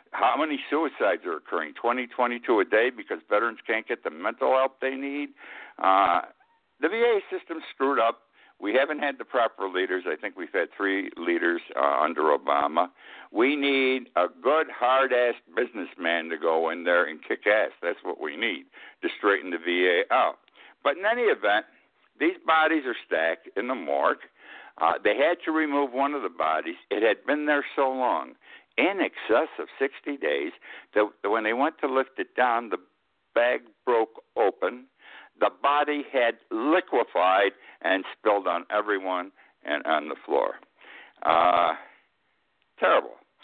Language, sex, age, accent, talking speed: English, male, 60-79, American, 165 wpm